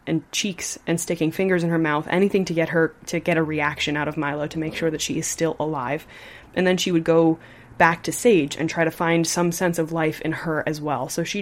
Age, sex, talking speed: 20-39, female, 260 wpm